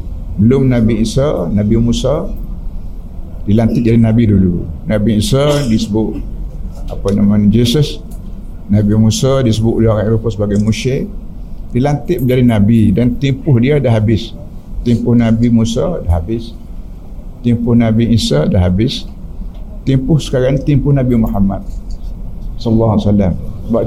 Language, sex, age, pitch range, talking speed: Malayalam, male, 60-79, 100-120 Hz, 125 wpm